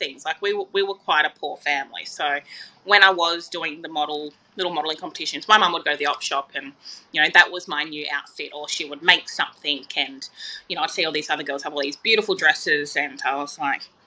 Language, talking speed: English, 250 wpm